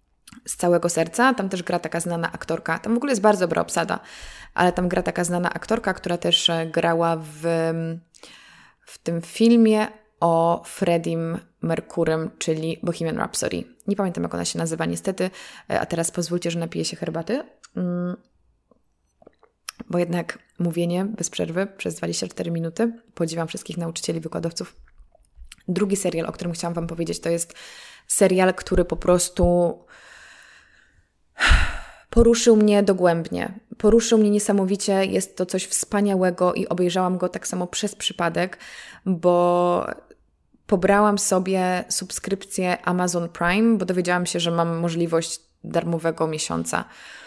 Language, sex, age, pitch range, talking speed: Polish, female, 20-39, 165-200 Hz, 135 wpm